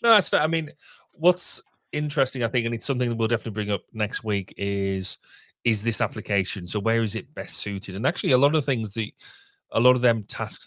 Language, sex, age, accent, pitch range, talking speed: English, male, 30-49, British, 100-125 Hz, 230 wpm